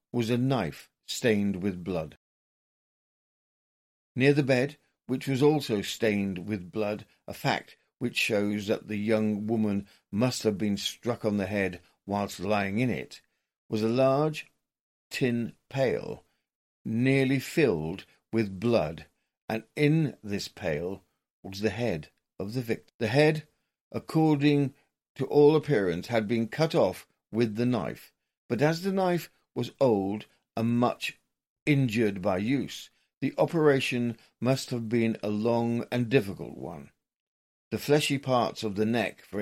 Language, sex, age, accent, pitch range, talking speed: English, male, 50-69, British, 105-135 Hz, 145 wpm